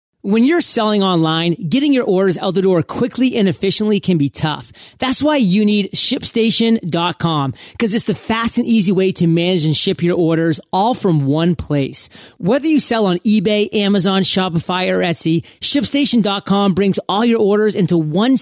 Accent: American